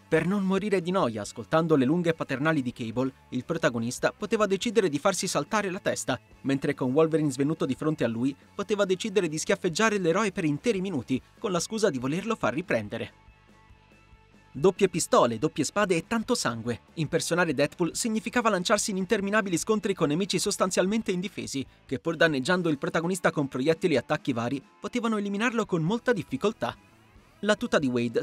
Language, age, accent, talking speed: Italian, 30-49, native, 170 wpm